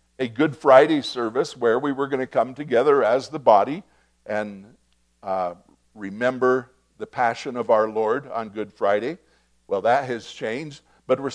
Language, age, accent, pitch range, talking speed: English, 60-79, American, 110-155 Hz, 165 wpm